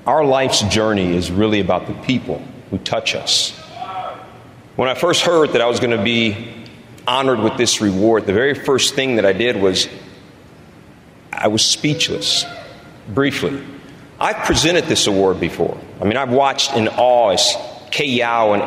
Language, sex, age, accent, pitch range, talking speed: English, male, 40-59, American, 105-135 Hz, 165 wpm